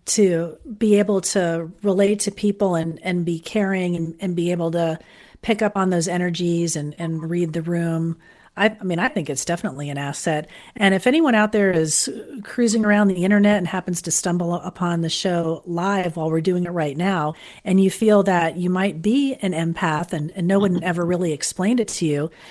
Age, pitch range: 40-59, 165-200 Hz